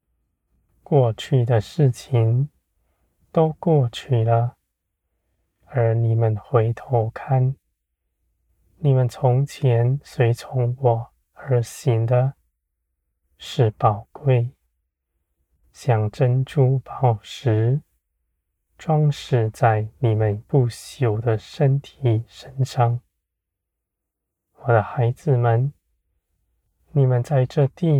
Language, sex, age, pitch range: Chinese, male, 20-39, 85-125 Hz